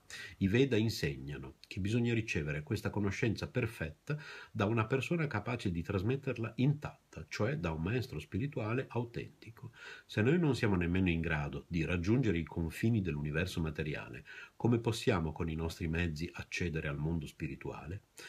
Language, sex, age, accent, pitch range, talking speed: Italian, male, 50-69, native, 80-115 Hz, 150 wpm